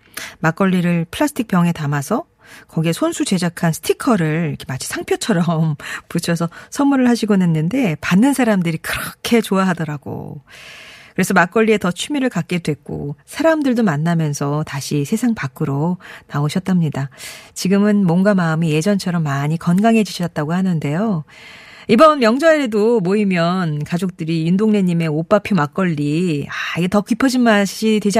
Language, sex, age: Korean, female, 40-59